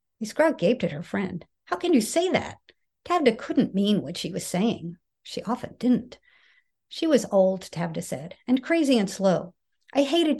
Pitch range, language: 185-245 Hz, English